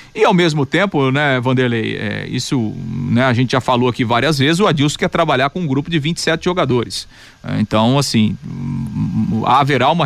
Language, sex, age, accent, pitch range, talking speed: Portuguese, male, 40-59, Brazilian, 125-155 Hz, 175 wpm